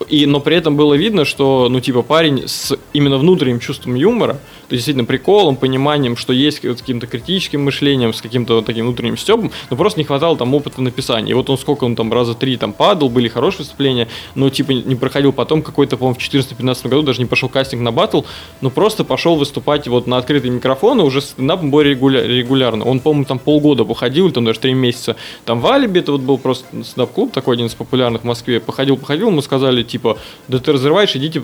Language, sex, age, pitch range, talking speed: Russian, male, 20-39, 120-145 Hz, 220 wpm